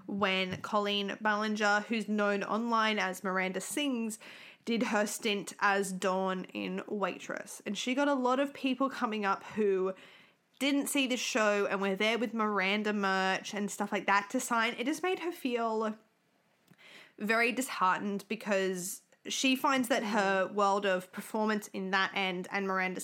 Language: English